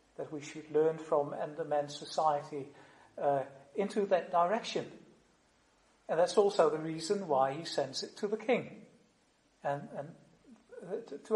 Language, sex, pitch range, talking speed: Dutch, male, 155-200 Hz, 145 wpm